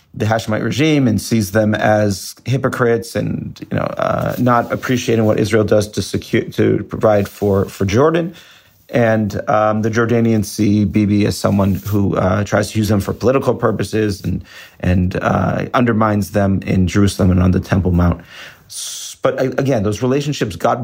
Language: English